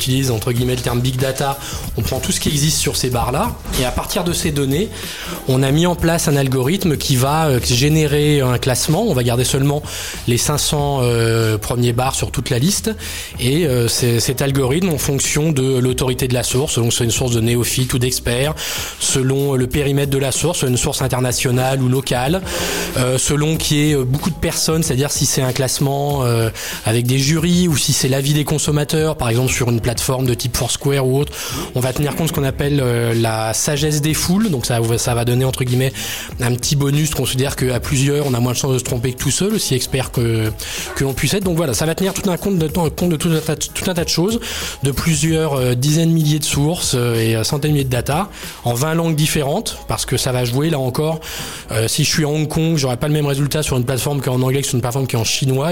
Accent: French